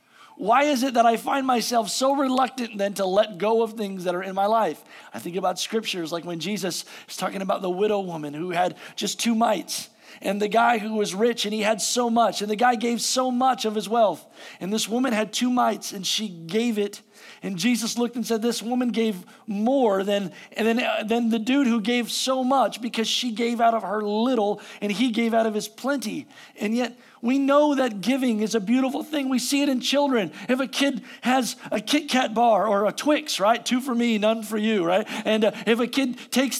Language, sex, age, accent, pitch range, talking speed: English, male, 40-59, American, 210-260 Hz, 230 wpm